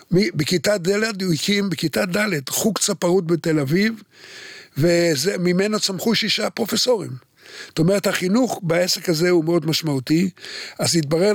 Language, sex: Hebrew, male